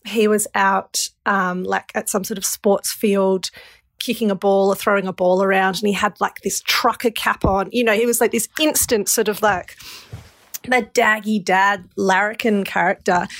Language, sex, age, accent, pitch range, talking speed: English, female, 30-49, Australian, 195-220 Hz, 190 wpm